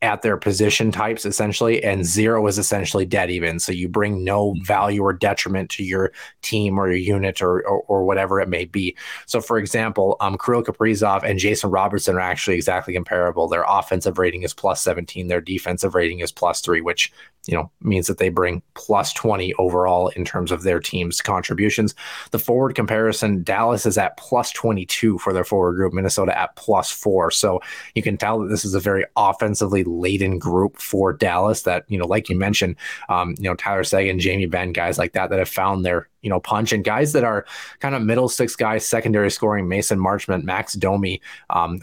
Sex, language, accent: male, English, American